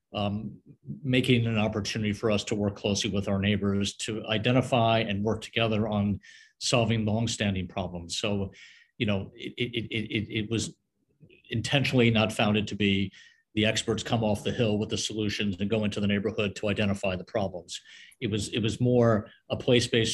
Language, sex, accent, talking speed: English, male, American, 180 wpm